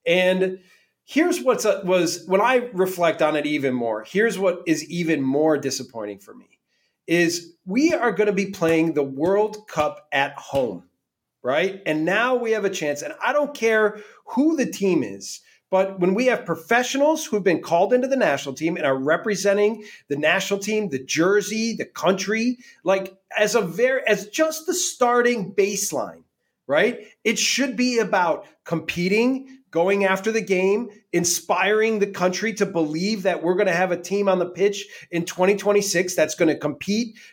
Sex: male